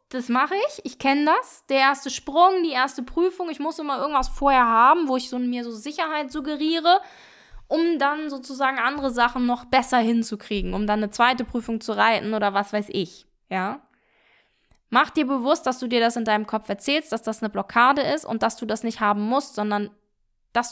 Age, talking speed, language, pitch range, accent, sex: 10-29, 200 wpm, German, 225-285 Hz, German, female